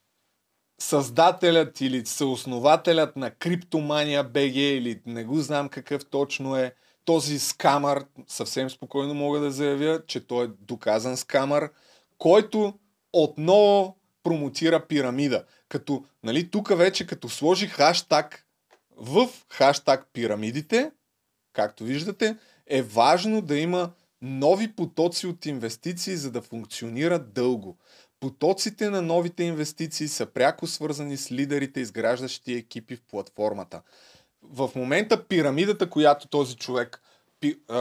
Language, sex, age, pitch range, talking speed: Bulgarian, male, 30-49, 125-175 Hz, 115 wpm